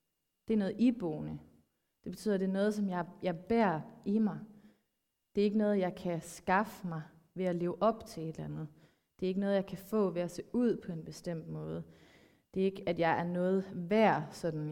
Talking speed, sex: 230 wpm, female